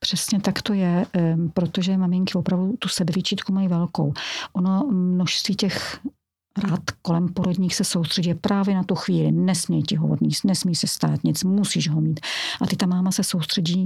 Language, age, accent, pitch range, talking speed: Czech, 50-69, native, 170-200 Hz, 175 wpm